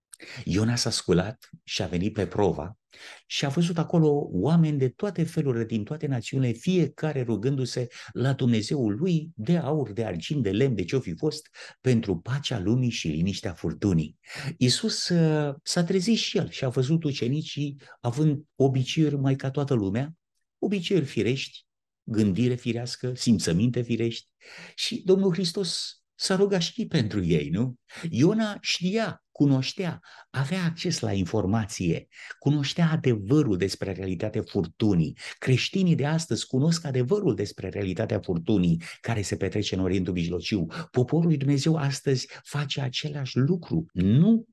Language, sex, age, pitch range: Romanian, male, 50-69, 110-160 Hz